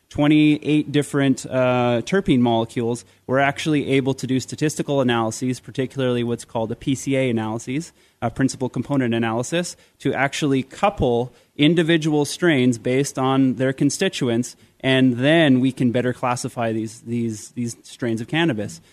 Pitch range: 120-135 Hz